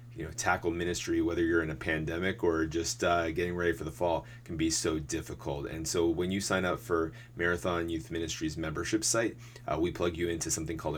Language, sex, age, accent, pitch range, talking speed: English, male, 30-49, American, 80-115 Hz, 220 wpm